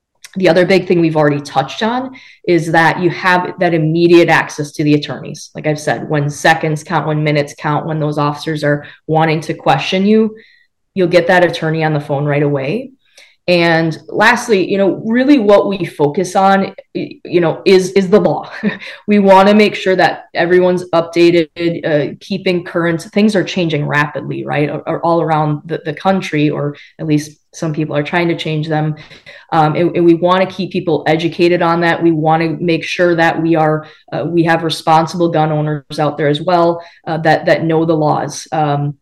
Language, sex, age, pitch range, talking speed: English, female, 20-39, 150-180 Hz, 195 wpm